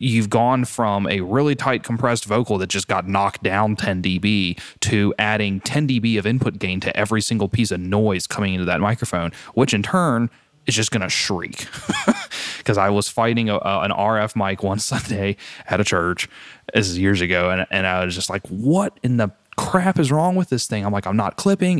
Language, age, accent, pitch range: English, 20-39, American, 95-115 Hz